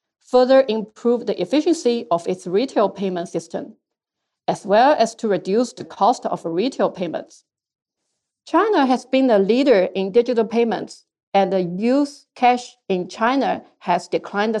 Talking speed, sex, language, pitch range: 150 wpm, female, English, 200-265 Hz